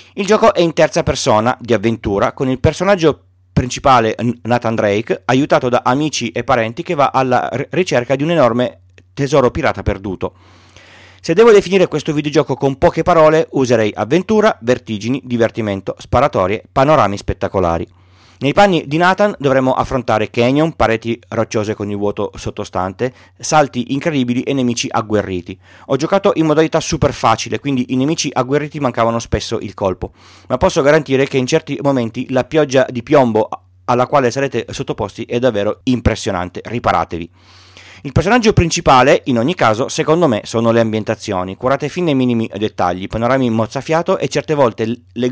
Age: 30-49